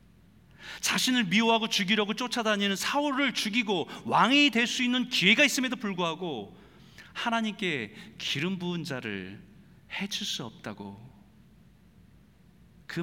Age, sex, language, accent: 40-59, male, Korean, native